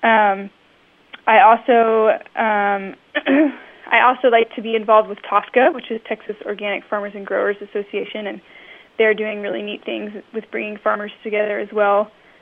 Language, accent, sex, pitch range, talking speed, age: English, American, female, 200-230 Hz, 155 wpm, 10-29